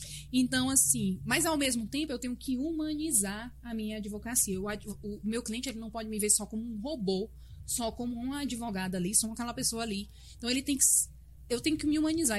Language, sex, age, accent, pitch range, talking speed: Portuguese, female, 20-39, Brazilian, 205-270 Hz, 215 wpm